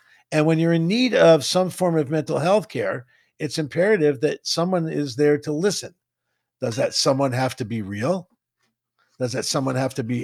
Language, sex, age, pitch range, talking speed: English, male, 50-69, 140-165 Hz, 195 wpm